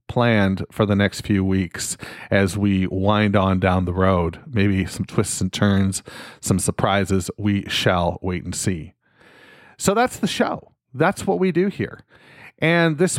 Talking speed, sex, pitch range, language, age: 165 wpm, male, 100-130 Hz, English, 40-59